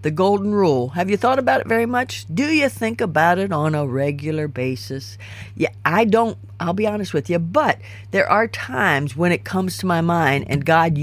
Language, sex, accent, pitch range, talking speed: English, female, American, 110-175 Hz, 210 wpm